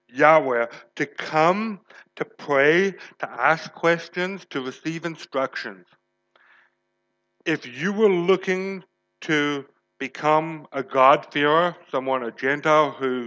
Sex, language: male, English